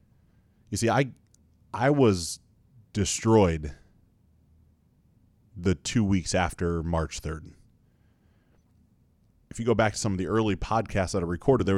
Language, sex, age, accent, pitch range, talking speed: English, male, 30-49, American, 90-110 Hz, 130 wpm